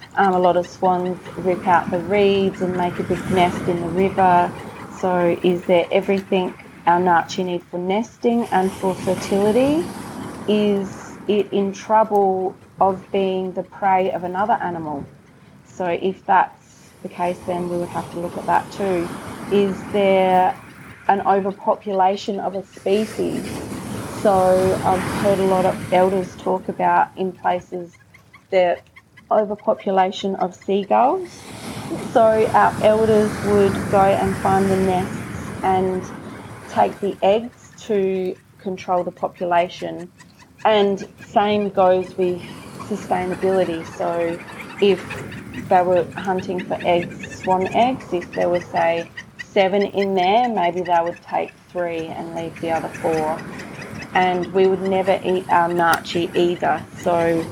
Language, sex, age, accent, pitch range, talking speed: English, female, 30-49, Australian, 175-195 Hz, 140 wpm